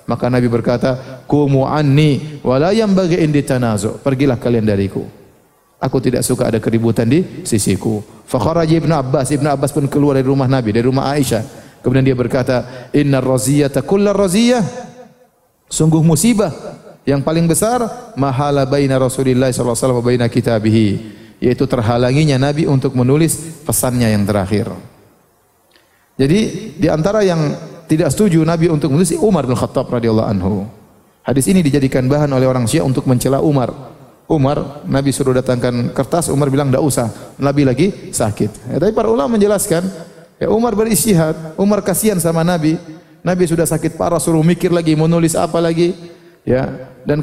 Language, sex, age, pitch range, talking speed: Indonesian, male, 30-49, 130-170 Hz, 135 wpm